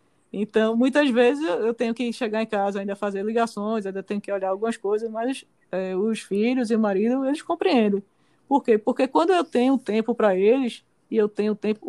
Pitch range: 210-270 Hz